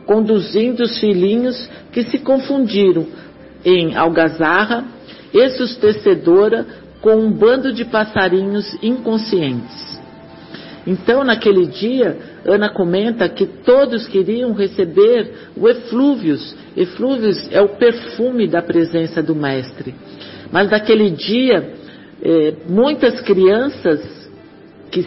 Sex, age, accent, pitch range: male, 50-69, Brazilian, 175-235 Hz